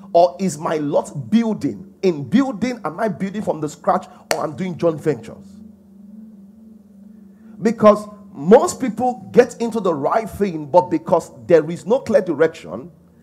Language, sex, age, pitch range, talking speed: English, male, 40-59, 170-220 Hz, 155 wpm